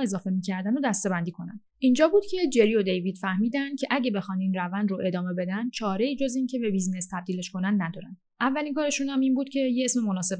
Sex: female